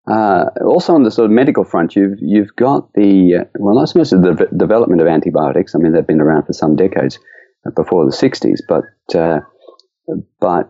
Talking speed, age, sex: 215 wpm, 40-59, male